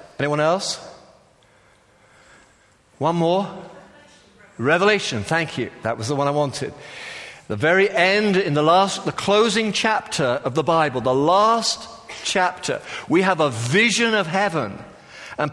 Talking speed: 135 wpm